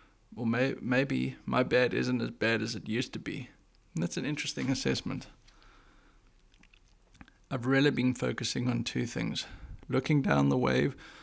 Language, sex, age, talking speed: English, male, 20-39, 155 wpm